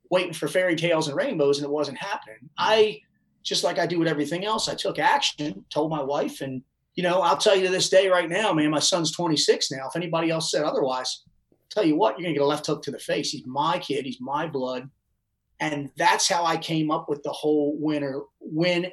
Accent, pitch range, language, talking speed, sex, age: American, 140-165 Hz, English, 235 wpm, male, 30-49